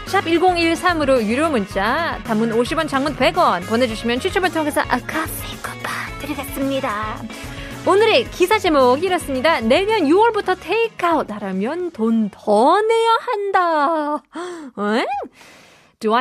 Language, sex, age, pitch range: Korean, female, 20-39, 210-310 Hz